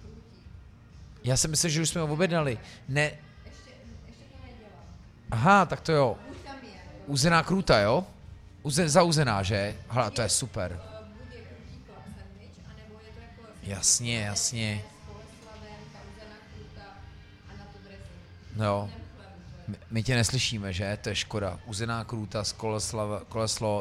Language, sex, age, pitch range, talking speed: Czech, male, 30-49, 100-135 Hz, 90 wpm